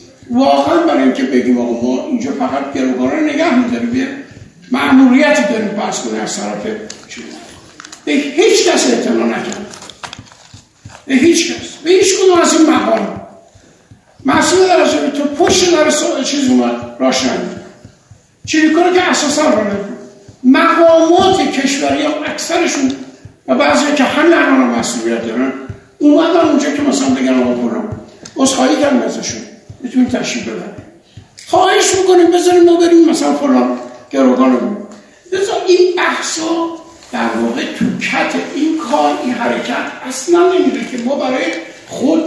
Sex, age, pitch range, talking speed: male, 60-79, 240-330 Hz, 125 wpm